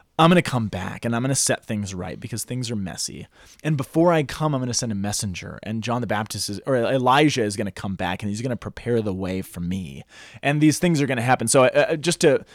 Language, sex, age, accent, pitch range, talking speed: English, male, 20-39, American, 110-150 Hz, 270 wpm